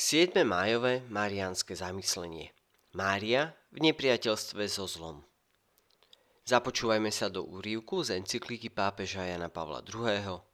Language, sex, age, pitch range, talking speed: Slovak, male, 30-49, 95-120 Hz, 110 wpm